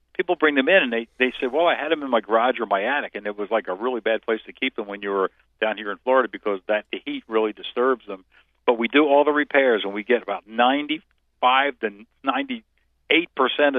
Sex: male